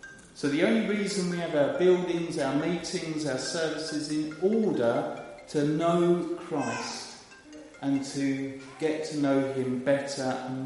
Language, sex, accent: English, male, British